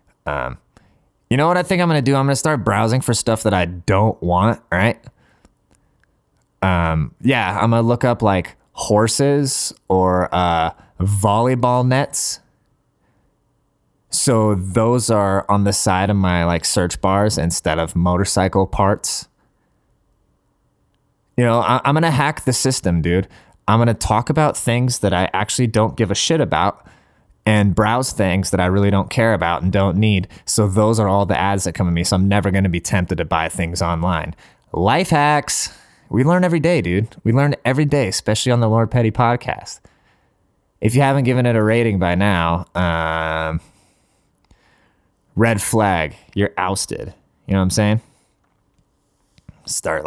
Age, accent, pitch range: 20-39, American, 95-120 Hz